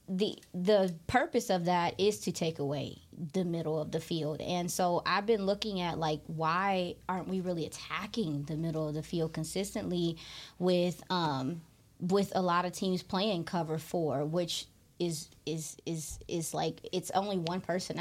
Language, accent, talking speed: English, American, 175 wpm